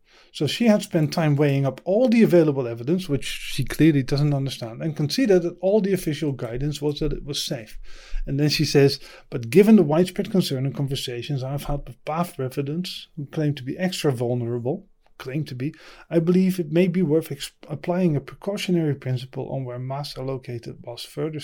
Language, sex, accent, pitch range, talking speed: English, male, Dutch, 135-180 Hz, 200 wpm